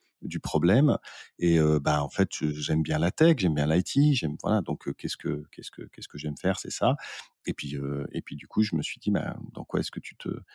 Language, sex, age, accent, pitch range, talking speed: French, male, 40-59, French, 80-95 Hz, 265 wpm